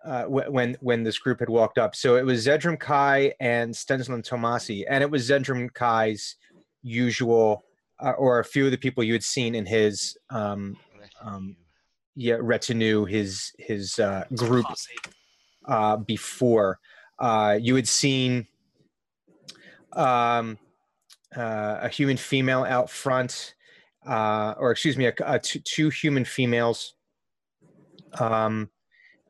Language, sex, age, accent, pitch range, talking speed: English, male, 30-49, American, 110-130 Hz, 135 wpm